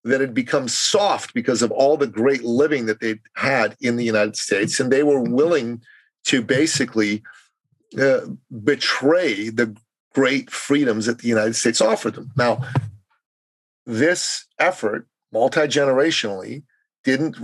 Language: English